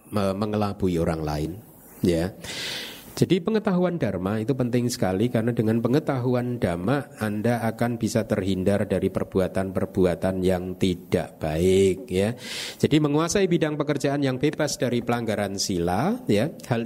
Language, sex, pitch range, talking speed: Indonesian, male, 100-125 Hz, 130 wpm